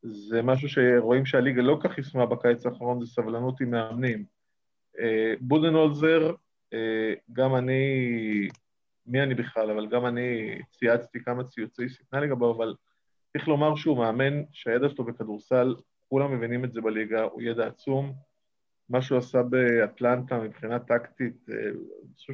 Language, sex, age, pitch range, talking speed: Hebrew, male, 20-39, 120-135 Hz, 135 wpm